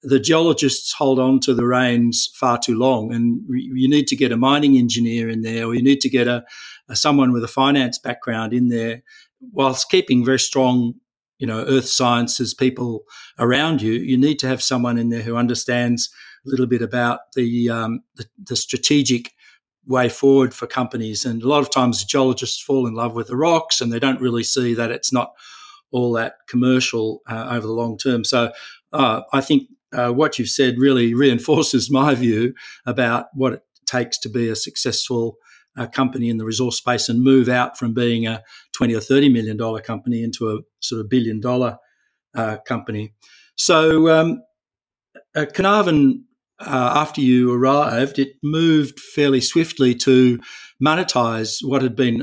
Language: English